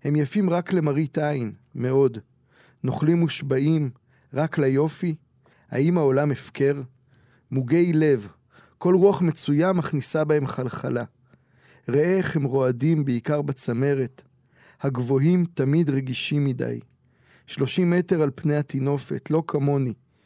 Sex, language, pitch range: male, Hebrew, 130-155 Hz